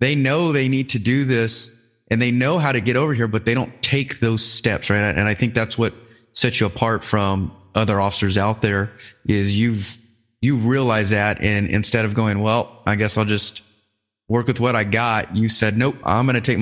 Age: 30-49